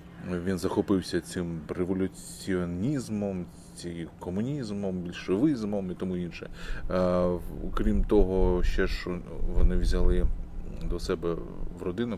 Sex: male